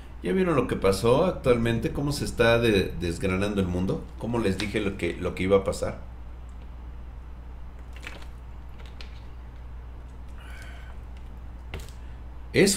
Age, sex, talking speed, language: 50-69, male, 105 wpm, Spanish